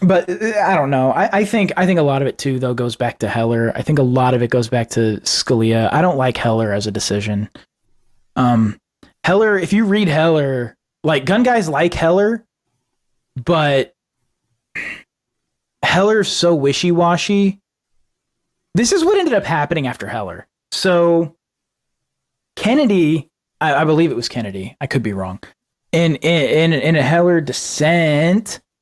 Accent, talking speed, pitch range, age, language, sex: American, 160 wpm, 125-170 Hz, 20-39, English, male